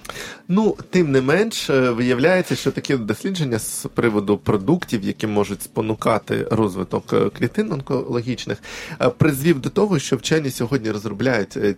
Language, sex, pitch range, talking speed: Ukrainian, male, 110-145 Hz, 120 wpm